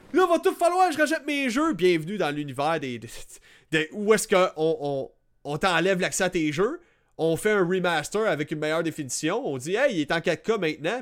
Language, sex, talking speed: French, male, 225 wpm